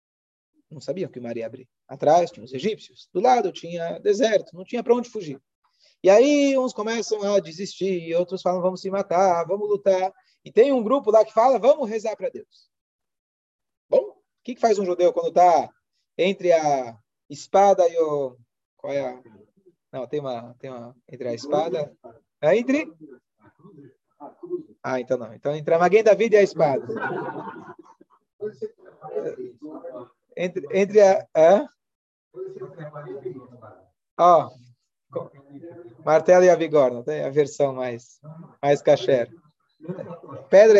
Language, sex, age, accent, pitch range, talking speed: Portuguese, male, 20-39, Brazilian, 165-270 Hz, 150 wpm